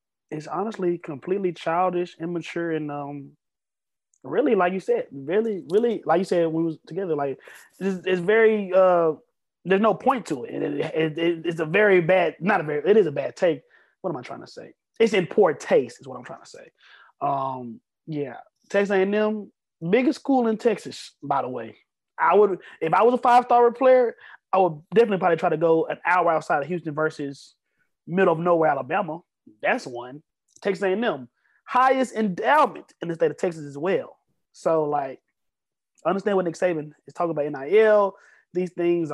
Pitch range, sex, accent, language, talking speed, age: 160-210 Hz, male, American, English, 190 wpm, 20-39